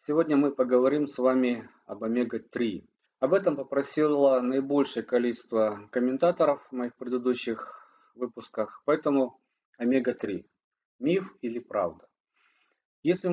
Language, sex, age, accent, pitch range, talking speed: Russian, male, 40-59, native, 115-140 Hz, 105 wpm